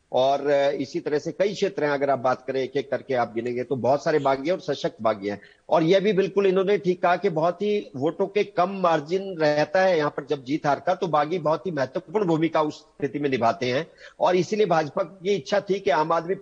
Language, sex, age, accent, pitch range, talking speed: Hindi, male, 50-69, native, 150-195 Hz, 240 wpm